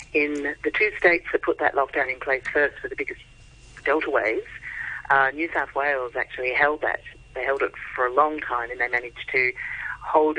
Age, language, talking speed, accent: 40-59, English, 200 wpm, British